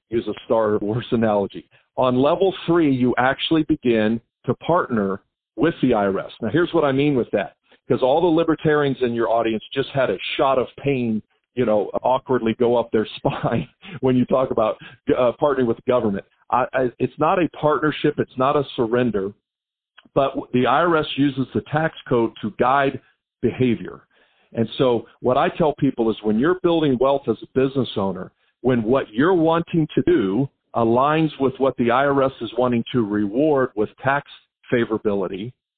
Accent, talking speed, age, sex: American, 175 wpm, 50-69, male